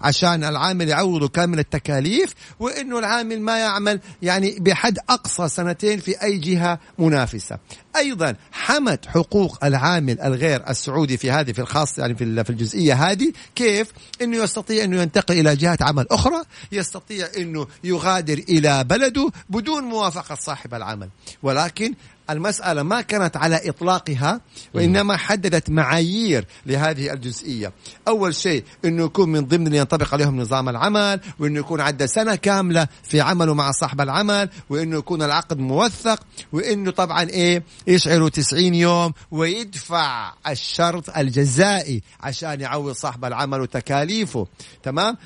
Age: 50-69